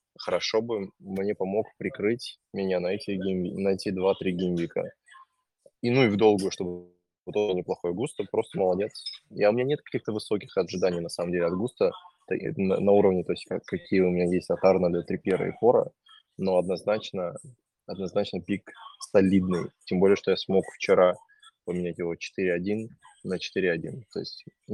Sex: male